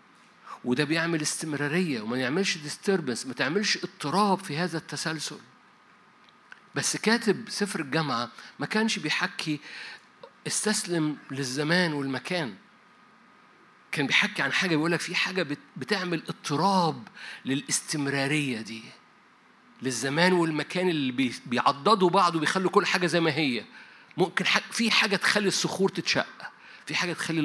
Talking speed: 115 wpm